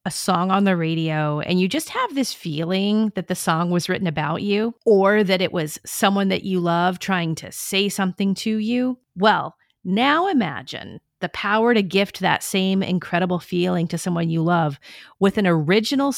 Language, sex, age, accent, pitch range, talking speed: English, female, 40-59, American, 170-210 Hz, 185 wpm